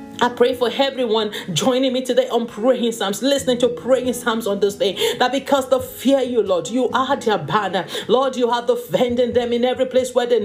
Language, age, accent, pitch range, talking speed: English, 40-59, Nigerian, 240-270 Hz, 215 wpm